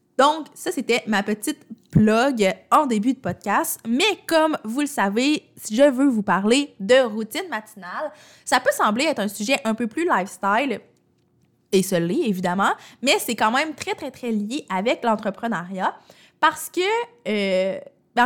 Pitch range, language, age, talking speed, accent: 200-260 Hz, French, 20-39, 165 wpm, Canadian